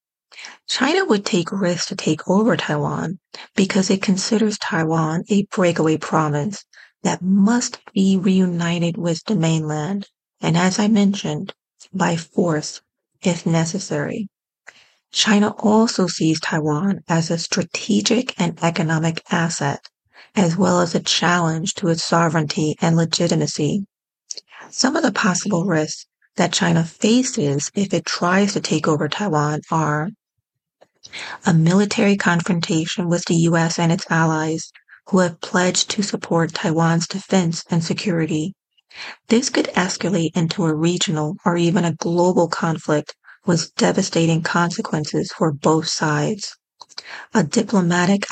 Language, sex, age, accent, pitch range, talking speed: English, female, 40-59, American, 165-200 Hz, 130 wpm